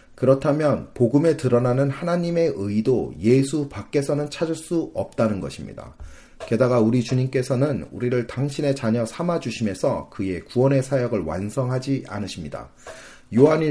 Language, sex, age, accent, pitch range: Korean, male, 30-49, native, 105-145 Hz